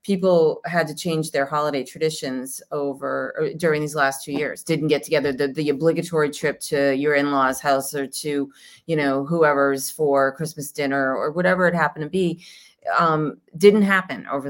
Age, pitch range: 30-49, 140-170 Hz